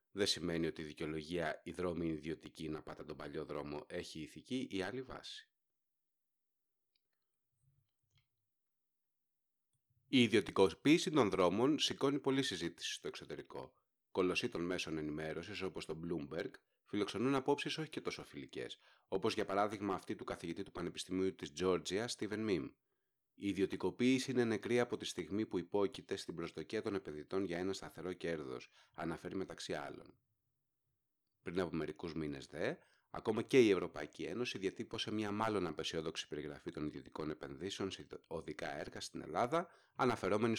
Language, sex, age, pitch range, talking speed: Greek, male, 30-49, 80-125 Hz, 140 wpm